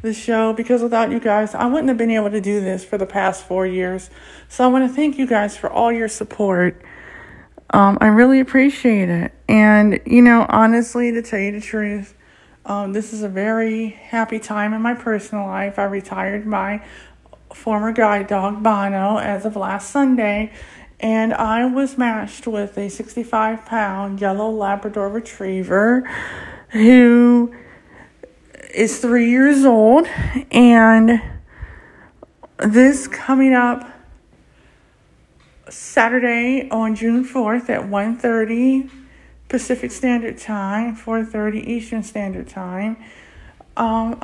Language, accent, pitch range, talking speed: English, American, 210-245 Hz, 135 wpm